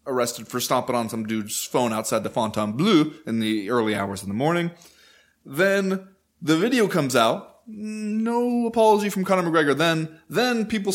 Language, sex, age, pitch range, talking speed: English, male, 20-39, 125-185 Hz, 165 wpm